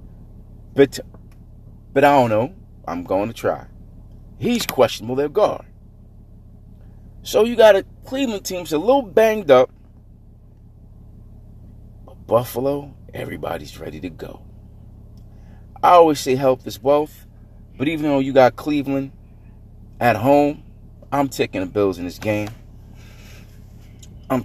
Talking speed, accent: 125 wpm, American